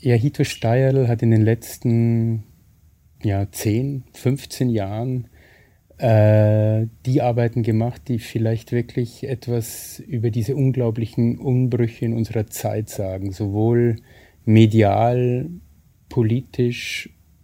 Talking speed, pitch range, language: 105 wpm, 110-125 Hz, German